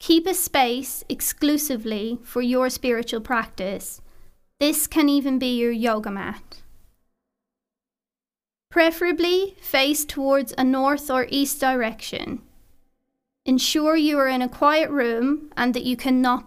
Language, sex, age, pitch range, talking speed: English, female, 20-39, 230-285 Hz, 125 wpm